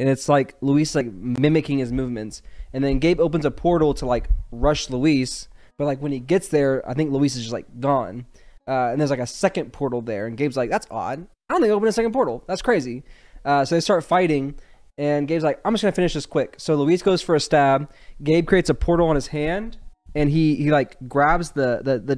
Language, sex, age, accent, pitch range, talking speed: English, male, 20-39, American, 130-160 Hz, 240 wpm